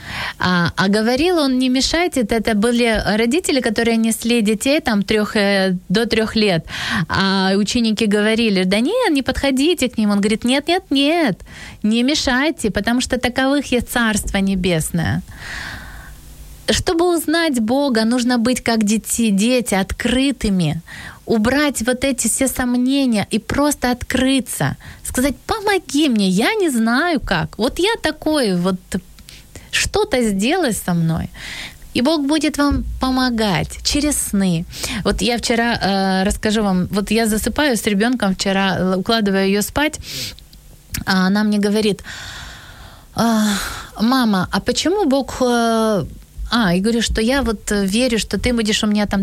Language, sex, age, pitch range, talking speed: Ukrainian, female, 20-39, 205-260 Hz, 135 wpm